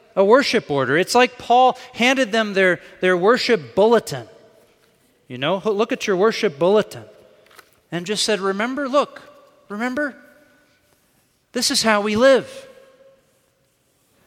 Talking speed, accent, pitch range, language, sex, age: 130 wpm, American, 160-225 Hz, English, male, 40-59